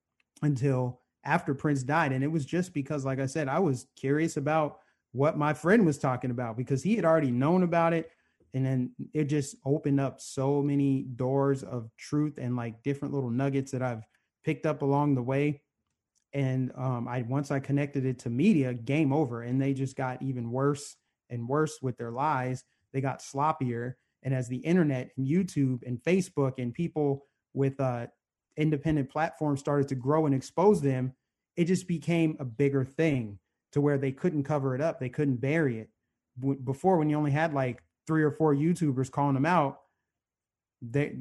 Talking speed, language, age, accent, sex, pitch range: 185 wpm, English, 30-49, American, male, 130-150 Hz